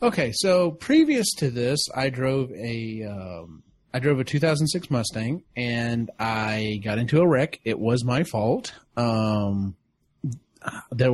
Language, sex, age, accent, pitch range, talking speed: English, male, 30-49, American, 110-145 Hz, 140 wpm